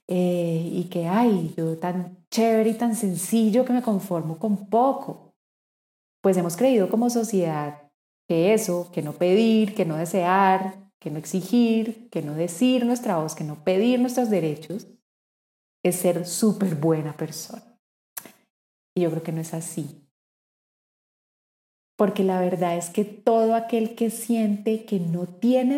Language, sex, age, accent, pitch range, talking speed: Spanish, female, 30-49, Colombian, 170-220 Hz, 150 wpm